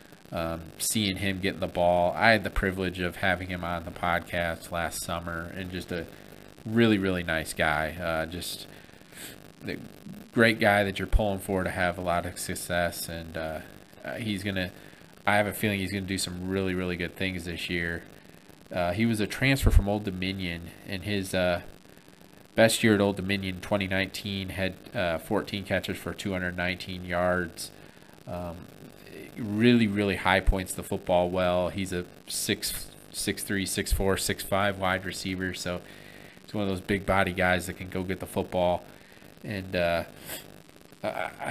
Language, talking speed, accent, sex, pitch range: English, 170 wpm, American, male, 90-100 Hz